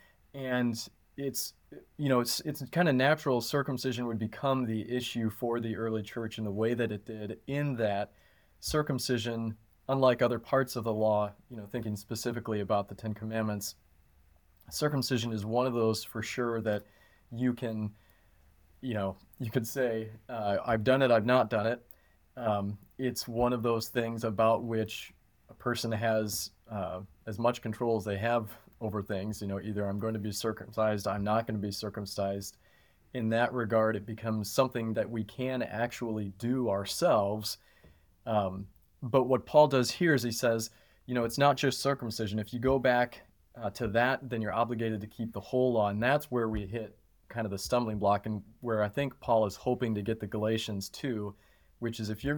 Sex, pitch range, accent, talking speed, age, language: male, 105-120 Hz, American, 190 wpm, 30-49, English